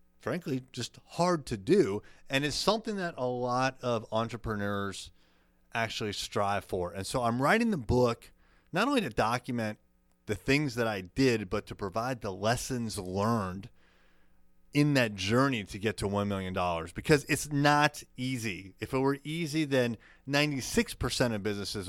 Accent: American